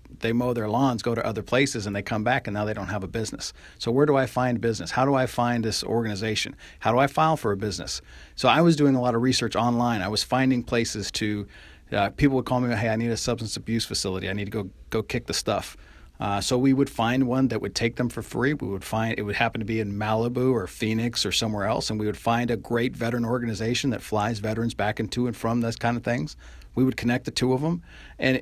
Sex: male